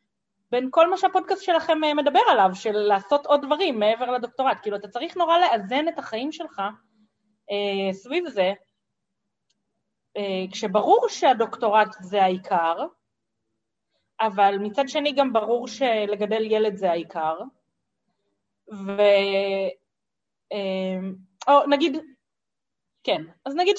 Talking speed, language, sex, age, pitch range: 105 wpm, Hebrew, female, 30-49, 195-290 Hz